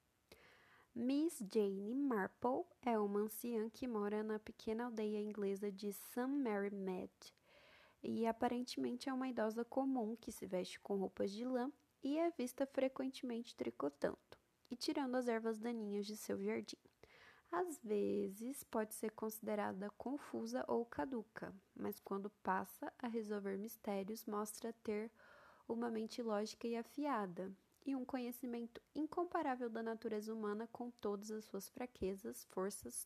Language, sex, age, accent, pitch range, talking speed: Portuguese, female, 10-29, Brazilian, 210-250 Hz, 140 wpm